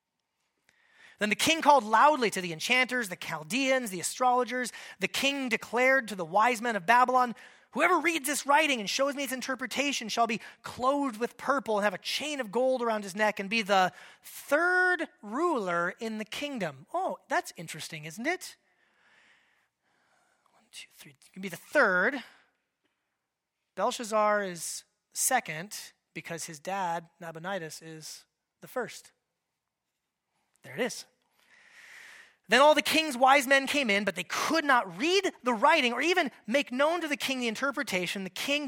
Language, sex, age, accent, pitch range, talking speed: English, male, 30-49, American, 190-270 Hz, 160 wpm